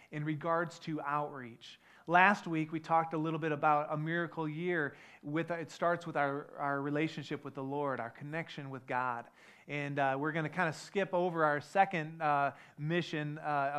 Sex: male